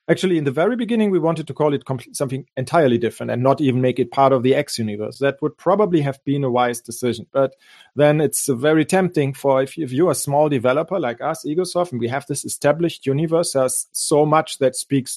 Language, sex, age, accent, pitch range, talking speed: English, male, 40-59, German, 125-150 Hz, 220 wpm